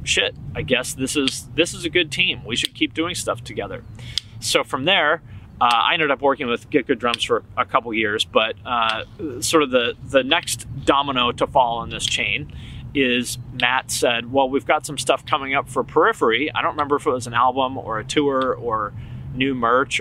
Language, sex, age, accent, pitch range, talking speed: English, male, 30-49, American, 110-140 Hz, 215 wpm